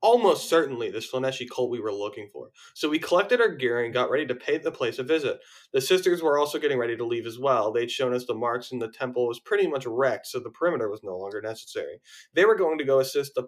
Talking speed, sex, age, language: 265 wpm, male, 20-39, English